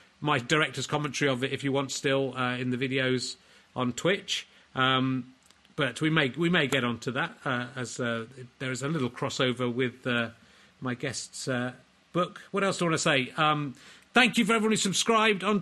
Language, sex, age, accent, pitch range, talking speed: English, male, 40-59, British, 140-195 Hz, 205 wpm